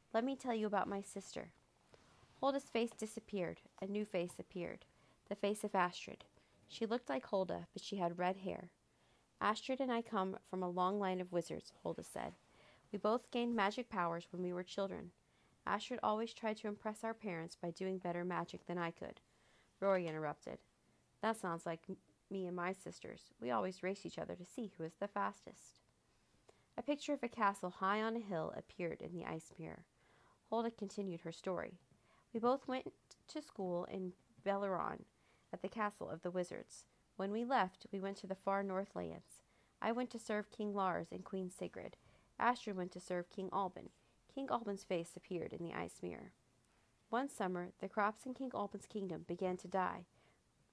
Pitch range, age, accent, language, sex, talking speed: 180-220 Hz, 40-59, American, English, female, 185 wpm